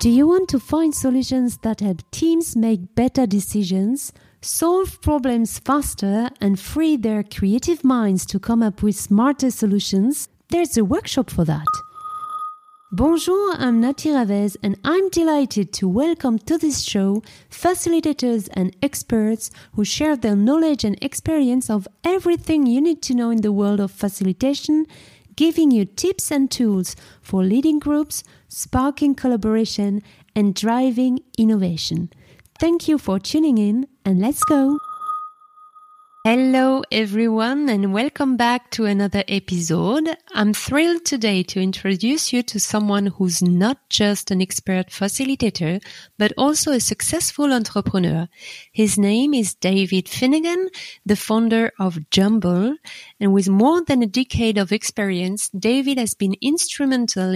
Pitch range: 205-290 Hz